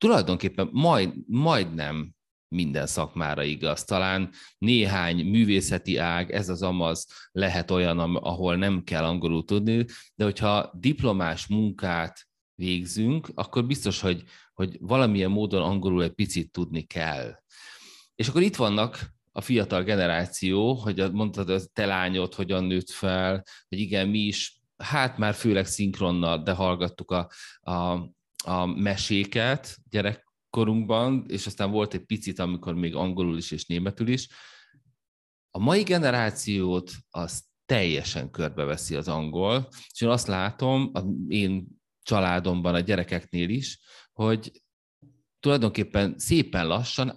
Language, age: Hungarian, 30-49